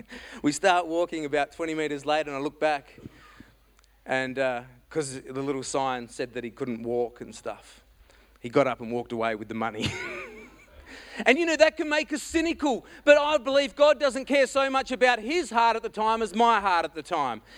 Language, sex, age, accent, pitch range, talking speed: English, male, 30-49, Australian, 200-250 Hz, 210 wpm